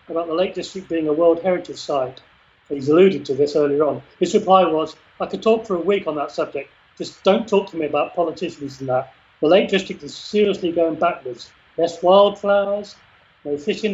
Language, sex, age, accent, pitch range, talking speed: English, male, 40-59, British, 155-200 Hz, 205 wpm